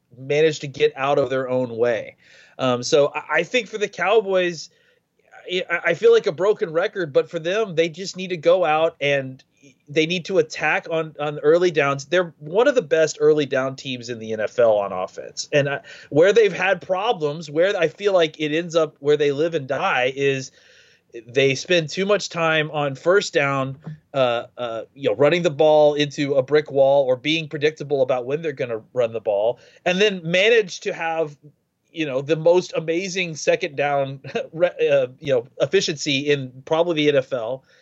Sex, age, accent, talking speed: male, 30-49, American, 195 wpm